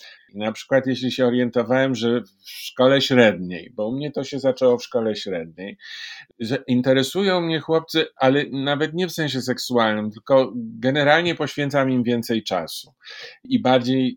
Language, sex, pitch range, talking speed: Polish, male, 110-135 Hz, 155 wpm